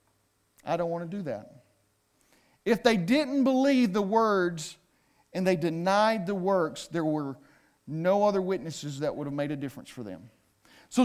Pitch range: 155-210 Hz